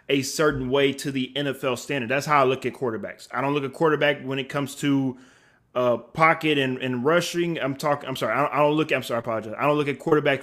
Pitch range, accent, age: 125-140 Hz, American, 20-39